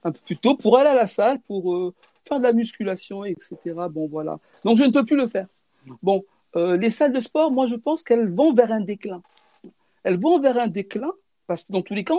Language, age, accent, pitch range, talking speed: French, 60-79, French, 180-260 Hz, 230 wpm